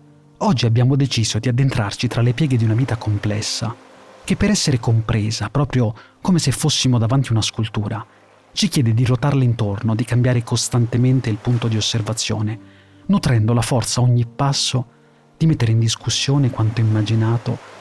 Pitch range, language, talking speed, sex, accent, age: 110-130 Hz, Italian, 160 wpm, male, native, 30-49